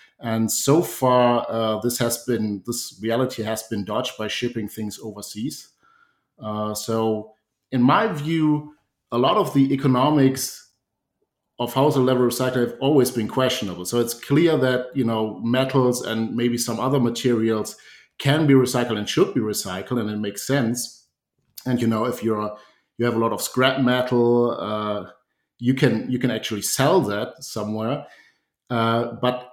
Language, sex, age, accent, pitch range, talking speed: English, male, 50-69, German, 110-130 Hz, 165 wpm